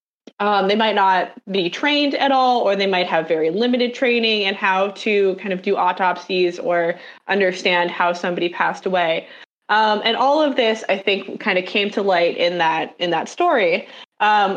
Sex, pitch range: female, 170-210 Hz